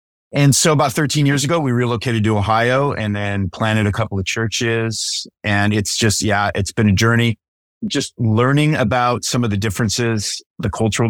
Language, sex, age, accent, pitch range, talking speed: English, male, 30-49, American, 100-120 Hz, 185 wpm